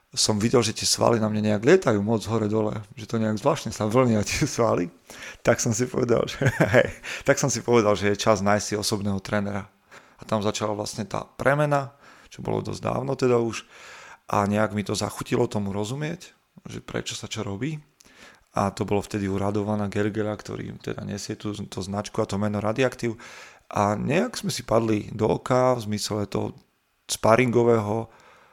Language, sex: Slovak, male